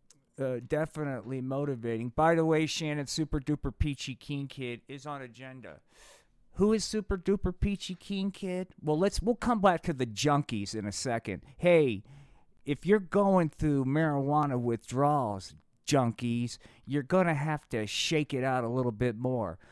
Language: English